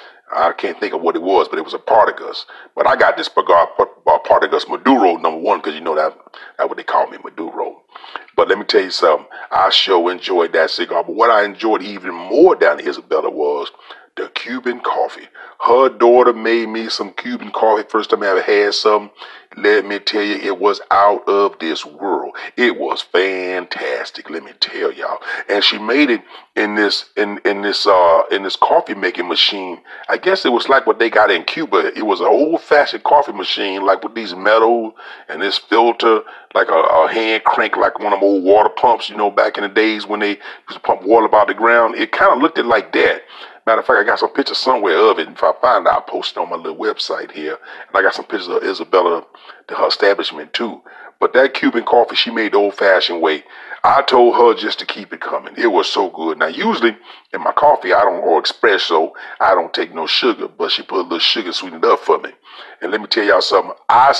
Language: English